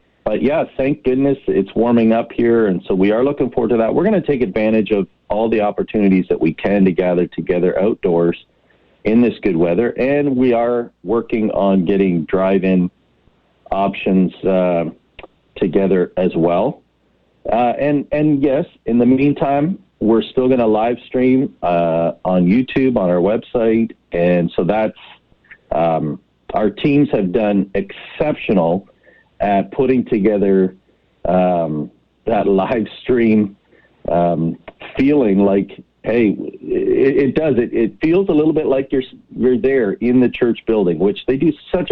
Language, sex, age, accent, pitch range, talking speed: English, male, 40-59, American, 90-130 Hz, 155 wpm